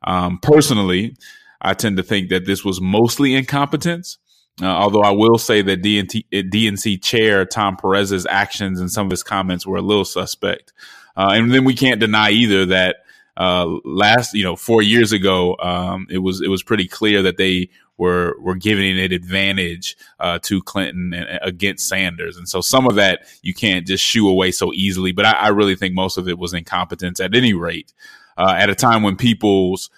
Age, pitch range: 20-39, 95-110 Hz